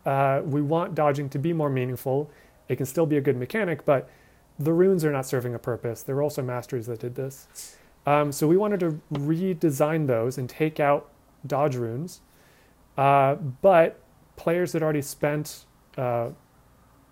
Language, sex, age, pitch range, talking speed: English, male, 30-49, 130-155 Hz, 170 wpm